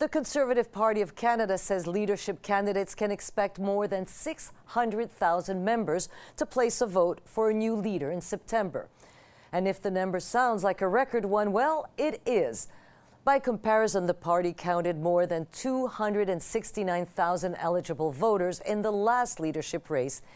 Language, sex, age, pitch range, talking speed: English, female, 50-69, 175-225 Hz, 150 wpm